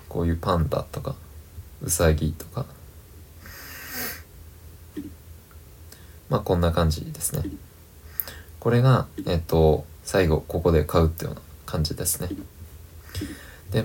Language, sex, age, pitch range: Japanese, male, 20-39, 80-100 Hz